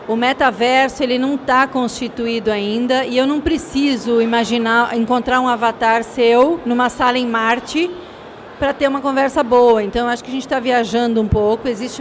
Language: Portuguese